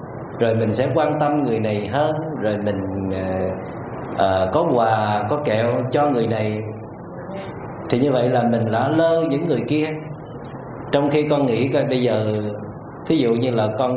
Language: Vietnamese